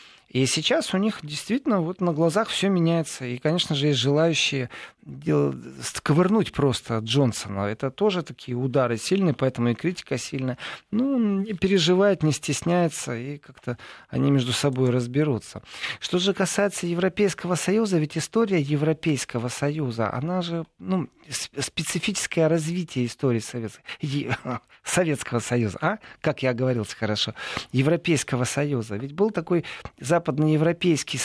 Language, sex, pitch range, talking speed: Russian, male, 130-170 Hz, 125 wpm